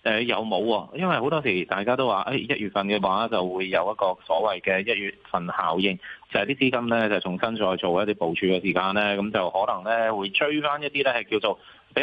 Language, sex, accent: Chinese, male, native